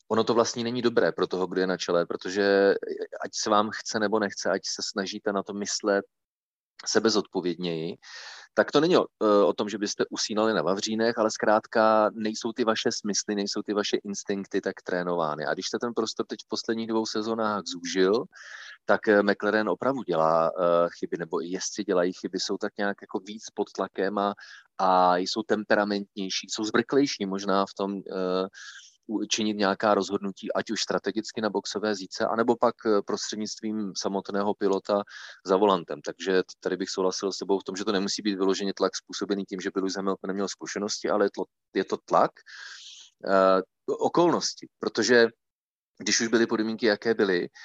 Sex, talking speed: male, 175 wpm